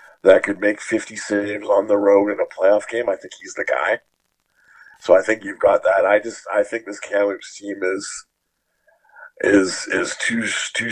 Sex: male